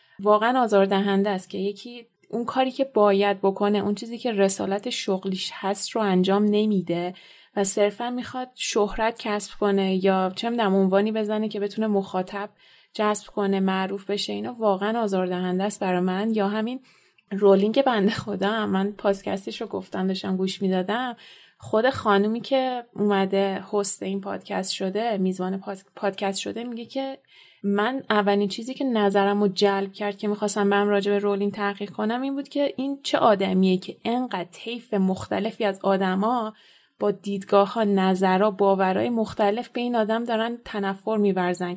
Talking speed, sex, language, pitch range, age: 150 wpm, female, Persian, 195-225 Hz, 30-49